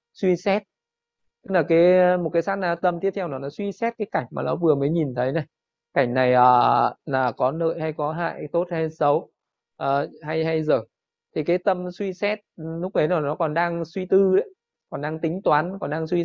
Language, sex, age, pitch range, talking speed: Vietnamese, male, 20-39, 145-180 Hz, 220 wpm